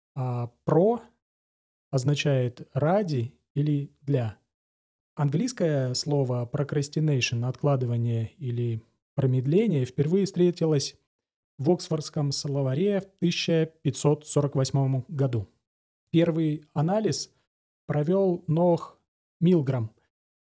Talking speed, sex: 75 wpm, male